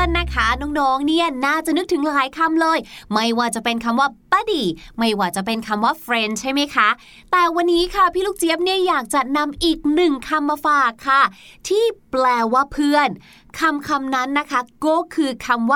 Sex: female